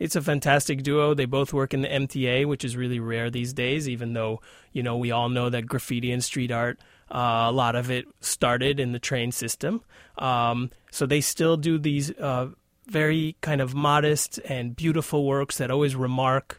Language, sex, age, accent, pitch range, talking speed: English, male, 30-49, American, 125-155 Hz, 200 wpm